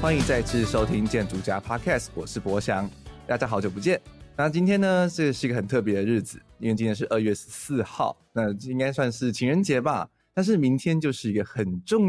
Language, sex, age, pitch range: Chinese, male, 20-39, 100-125 Hz